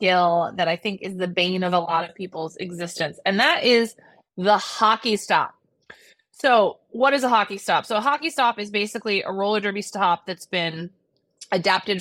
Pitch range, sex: 180-225 Hz, female